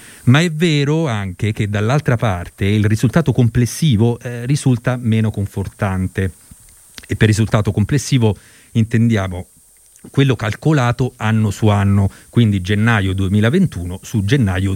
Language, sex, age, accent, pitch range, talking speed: Italian, male, 40-59, native, 95-130 Hz, 120 wpm